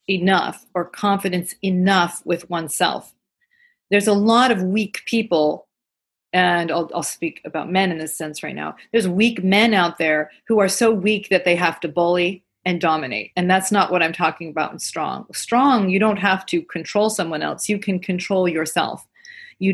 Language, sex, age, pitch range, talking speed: English, female, 40-59, 165-200 Hz, 185 wpm